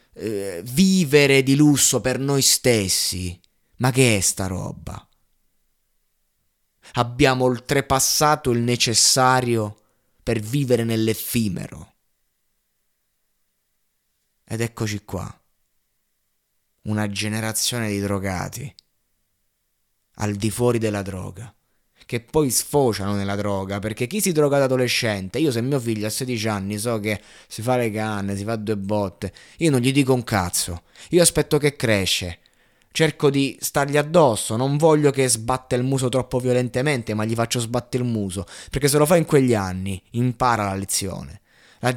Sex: male